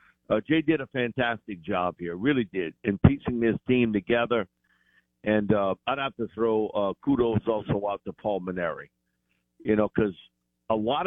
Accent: American